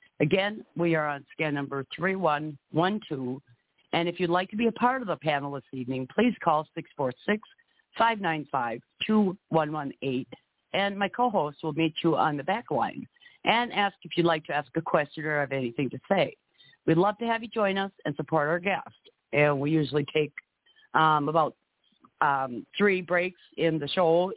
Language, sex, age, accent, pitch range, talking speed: English, female, 50-69, American, 145-185 Hz, 205 wpm